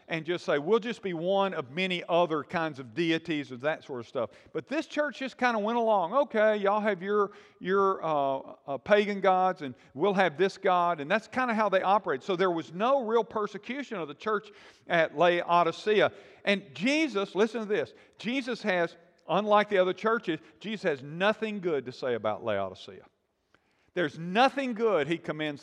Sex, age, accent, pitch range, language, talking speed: male, 50-69, American, 165-225 Hz, English, 190 wpm